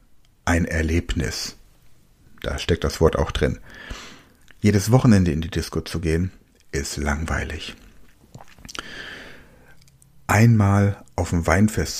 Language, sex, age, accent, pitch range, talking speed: German, male, 60-79, German, 85-110 Hz, 105 wpm